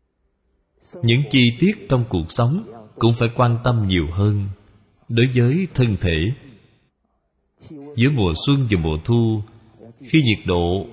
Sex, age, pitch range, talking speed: male, 20-39, 95-130 Hz, 135 wpm